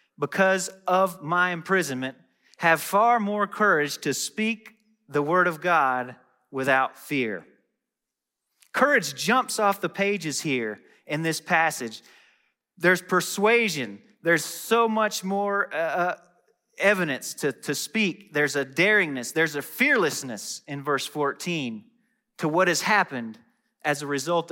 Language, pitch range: English, 145-200 Hz